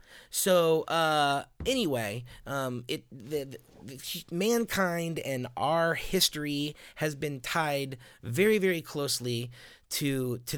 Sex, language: male, English